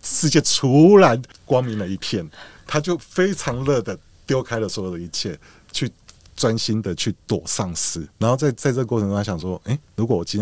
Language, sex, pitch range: Chinese, male, 85-110 Hz